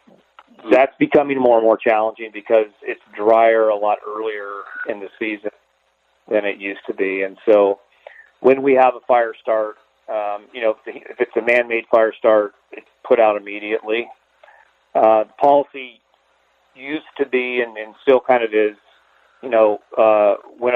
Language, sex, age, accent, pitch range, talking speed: English, male, 40-59, American, 105-115 Hz, 170 wpm